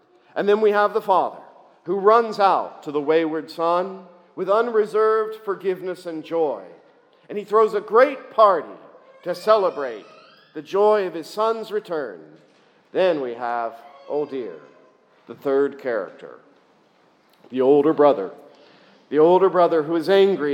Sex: male